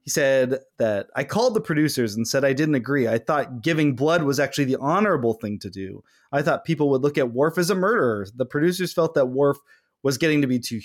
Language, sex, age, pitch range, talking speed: English, male, 20-39, 125-170 Hz, 240 wpm